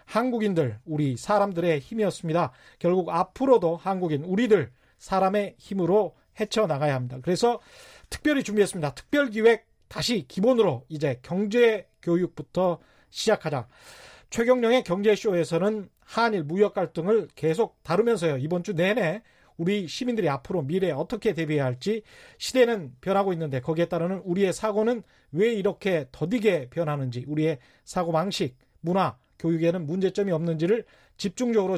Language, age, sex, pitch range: Korean, 30-49, male, 160-215 Hz